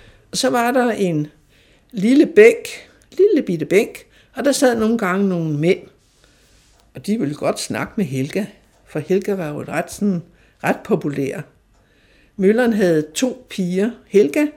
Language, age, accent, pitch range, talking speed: Danish, 60-79, native, 155-230 Hz, 150 wpm